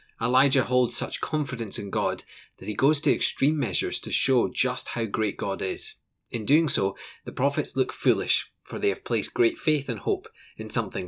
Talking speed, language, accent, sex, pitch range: 195 wpm, English, British, male, 110-140 Hz